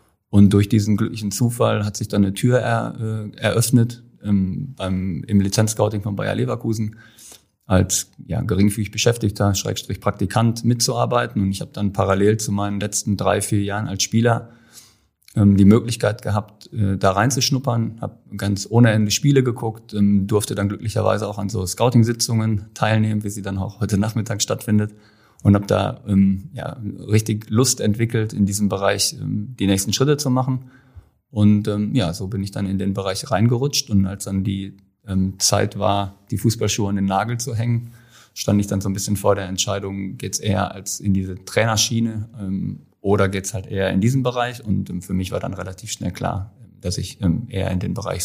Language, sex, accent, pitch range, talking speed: German, male, German, 100-115 Hz, 190 wpm